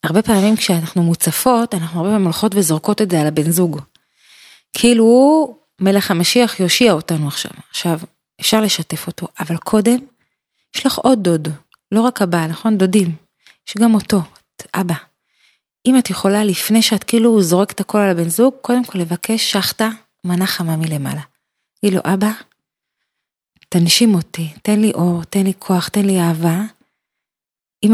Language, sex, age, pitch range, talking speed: Hebrew, female, 30-49, 175-215 Hz, 155 wpm